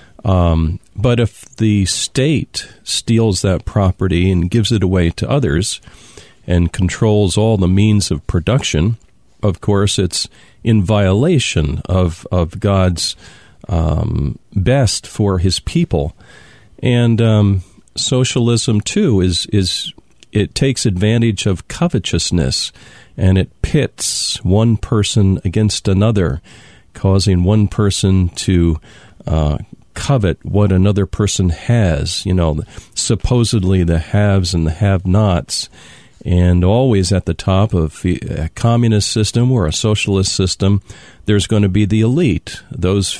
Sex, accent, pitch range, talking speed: male, American, 90-115 Hz, 125 wpm